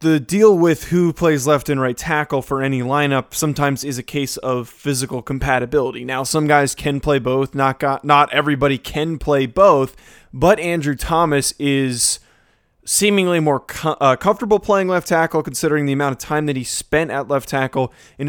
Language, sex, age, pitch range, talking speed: English, male, 20-39, 135-155 Hz, 185 wpm